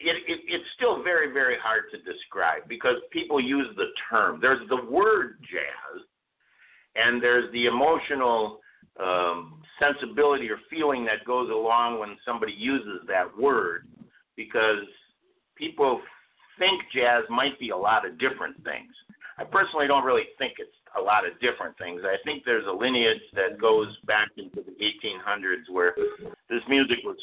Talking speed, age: 150 wpm, 50-69